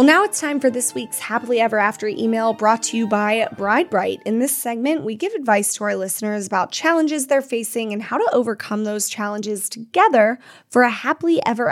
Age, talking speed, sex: 10-29, 210 wpm, female